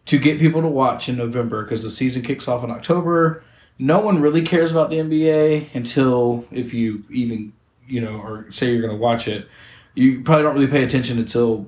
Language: English